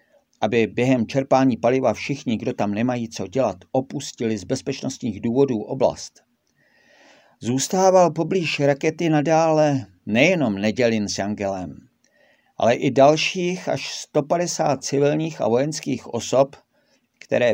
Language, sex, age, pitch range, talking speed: Czech, male, 50-69, 115-150 Hz, 115 wpm